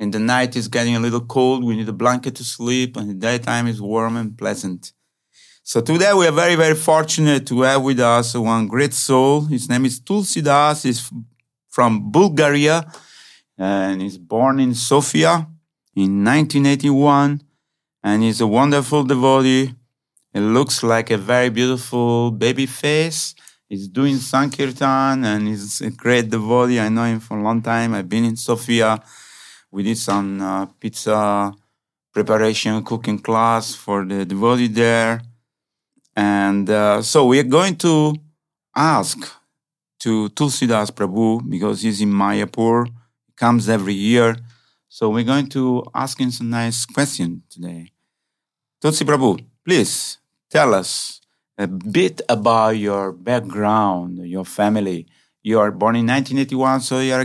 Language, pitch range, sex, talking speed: English, 110-135 Hz, male, 150 wpm